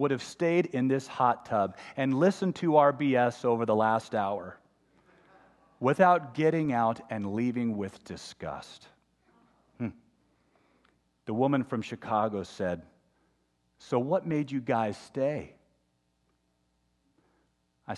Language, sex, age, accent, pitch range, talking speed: English, male, 40-59, American, 90-140 Hz, 120 wpm